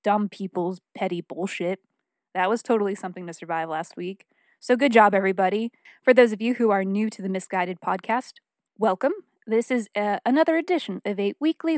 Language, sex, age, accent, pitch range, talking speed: English, female, 20-39, American, 190-250 Hz, 185 wpm